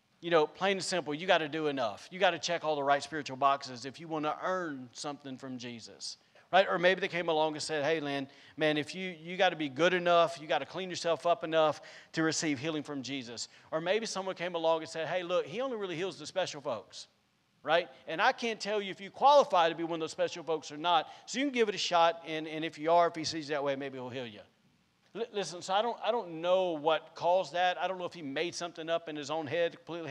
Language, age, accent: English, 40-59, American